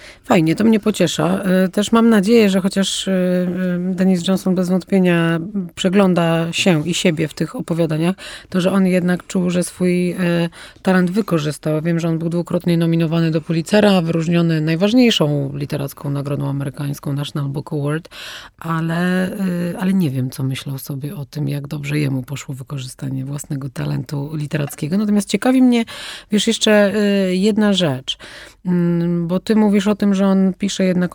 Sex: female